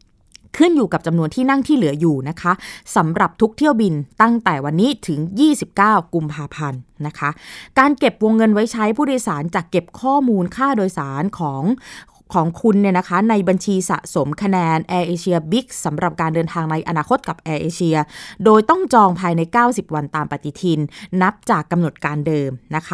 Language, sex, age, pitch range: Thai, female, 20-39, 165-230 Hz